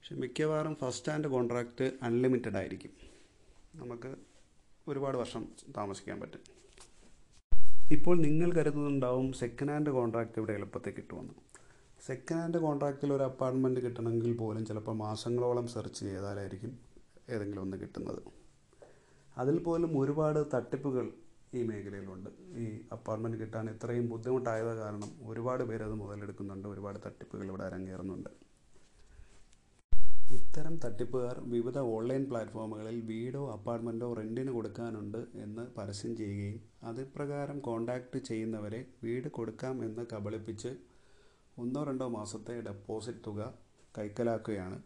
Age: 30-49